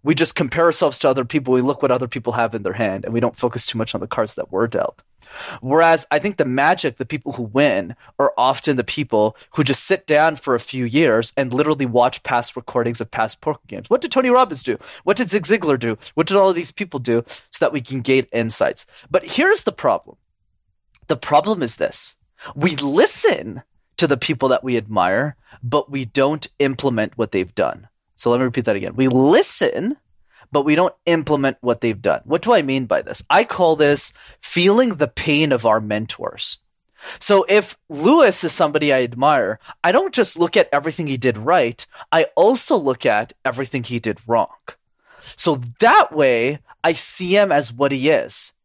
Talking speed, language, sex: 205 wpm, English, male